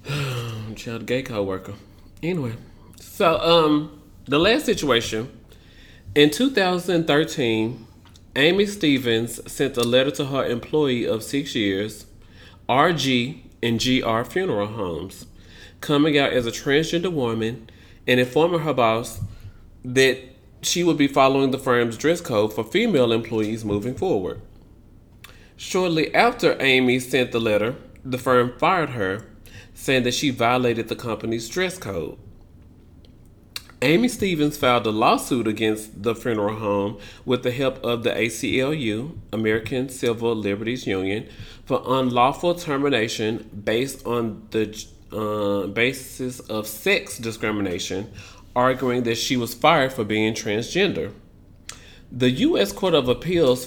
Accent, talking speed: American, 125 wpm